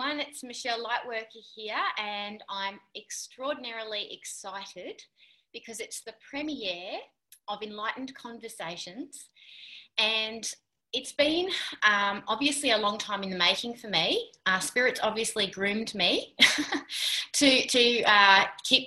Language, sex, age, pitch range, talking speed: English, female, 30-49, 180-240 Hz, 120 wpm